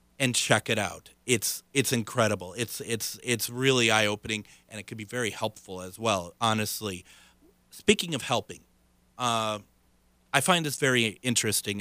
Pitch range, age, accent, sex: 105-130 Hz, 30-49, American, male